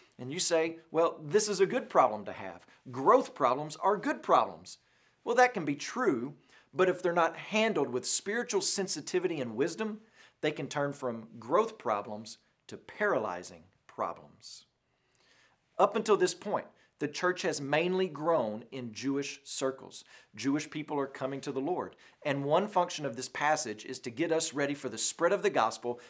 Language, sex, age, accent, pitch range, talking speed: English, male, 40-59, American, 135-195 Hz, 175 wpm